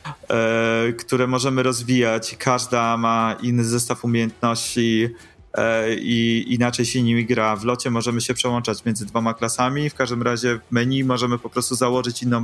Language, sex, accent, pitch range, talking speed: Polish, male, native, 110-125 Hz, 160 wpm